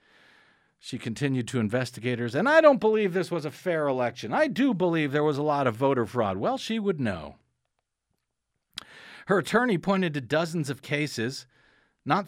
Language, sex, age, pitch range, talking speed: English, male, 50-69, 140-210 Hz, 170 wpm